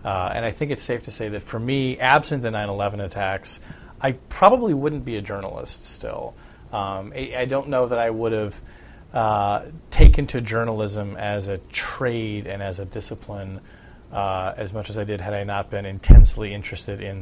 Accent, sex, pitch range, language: American, male, 95-115 Hz, English